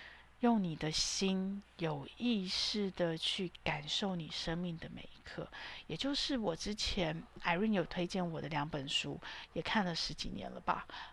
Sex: female